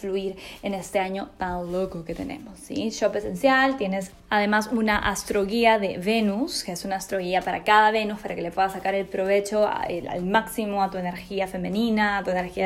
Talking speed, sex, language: 190 wpm, female, Spanish